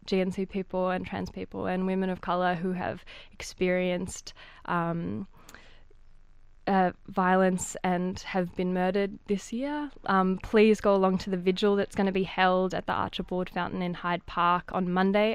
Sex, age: female, 20-39